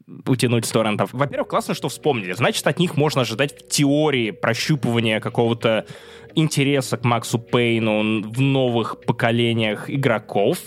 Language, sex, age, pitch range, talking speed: Russian, male, 20-39, 115-150 Hz, 130 wpm